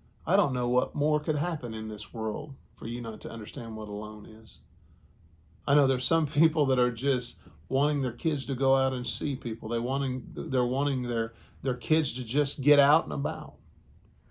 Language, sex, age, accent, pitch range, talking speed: English, male, 40-59, American, 110-145 Hz, 200 wpm